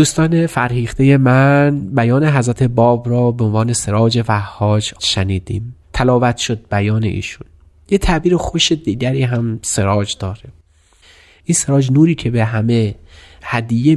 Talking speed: 135 wpm